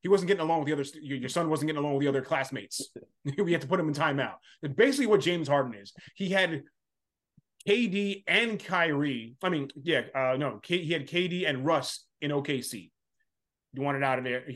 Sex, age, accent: male, 30-49, American